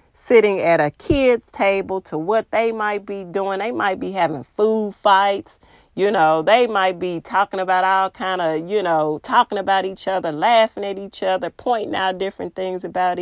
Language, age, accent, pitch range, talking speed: English, 40-59, American, 180-215 Hz, 190 wpm